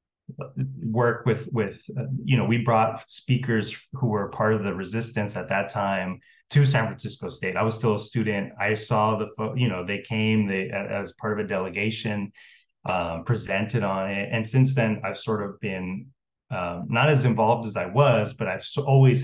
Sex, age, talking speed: male, 20-39, 185 wpm